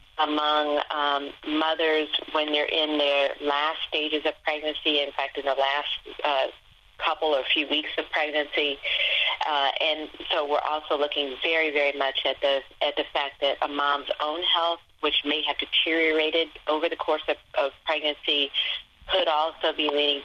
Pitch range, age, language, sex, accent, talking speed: 140-160 Hz, 40-59, English, female, American, 165 wpm